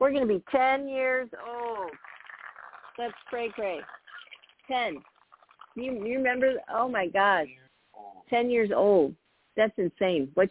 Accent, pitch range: American, 150-220 Hz